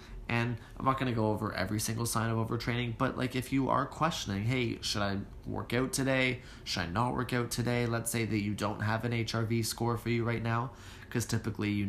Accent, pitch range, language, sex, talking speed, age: American, 100-120 Hz, English, male, 225 wpm, 20-39